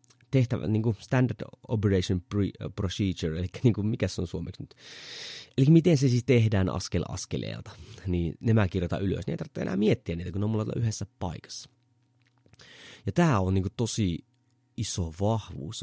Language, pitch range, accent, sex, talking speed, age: Finnish, 95-125 Hz, native, male, 165 wpm, 30-49